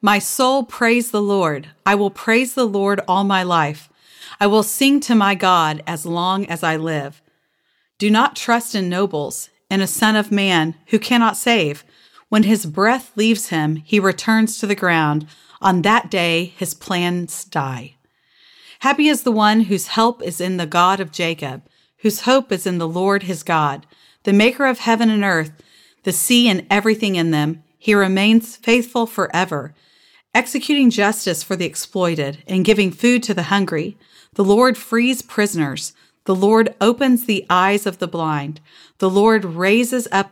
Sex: female